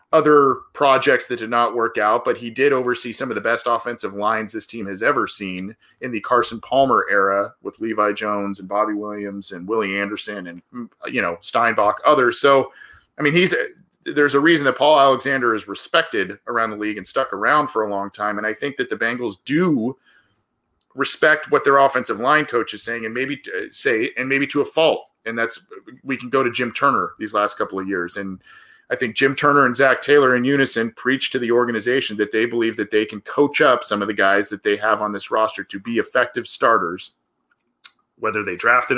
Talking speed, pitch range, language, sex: 210 wpm, 105-140 Hz, English, male